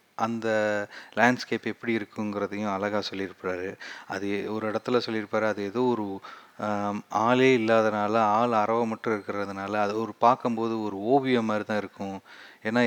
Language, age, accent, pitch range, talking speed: Tamil, 30-49, native, 105-120 Hz, 130 wpm